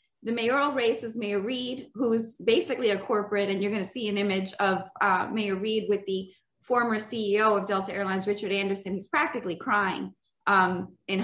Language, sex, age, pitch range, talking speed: English, female, 20-39, 205-290 Hz, 185 wpm